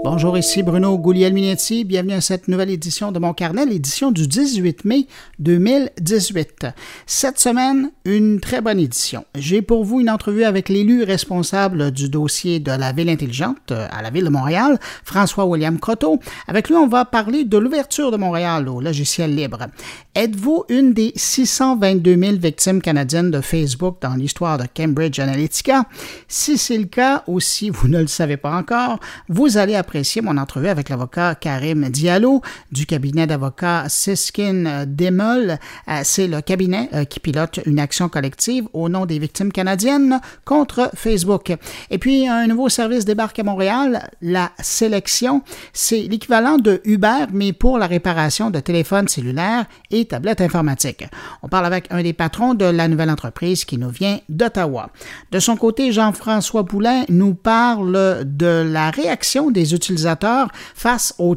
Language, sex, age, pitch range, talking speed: French, male, 50-69, 160-230 Hz, 160 wpm